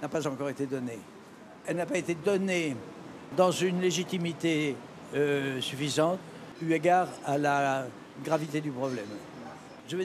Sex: male